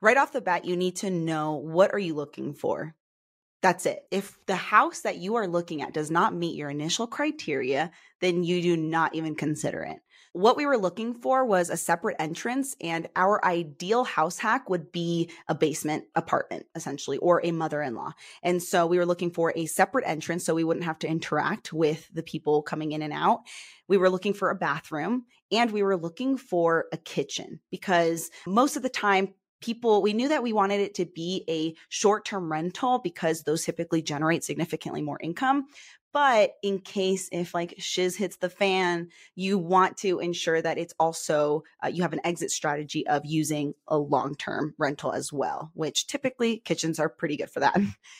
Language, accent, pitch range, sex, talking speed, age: English, American, 160-200 Hz, female, 195 wpm, 20-39